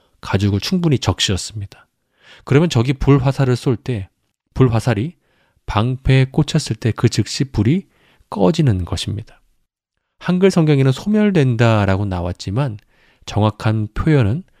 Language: Korean